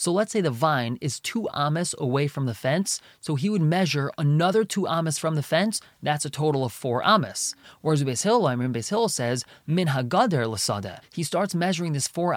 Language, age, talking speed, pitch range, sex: English, 20-39, 180 wpm, 135-190 Hz, male